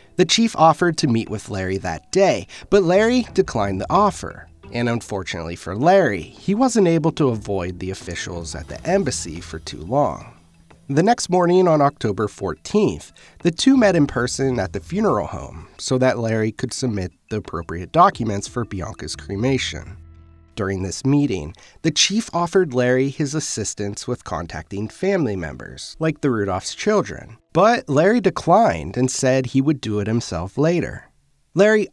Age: 30-49